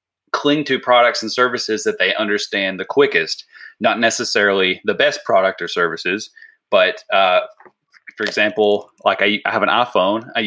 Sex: male